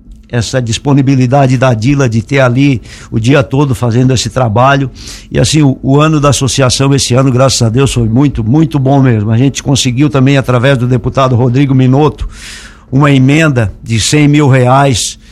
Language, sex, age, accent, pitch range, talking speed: Portuguese, male, 60-79, Brazilian, 120-140 Hz, 175 wpm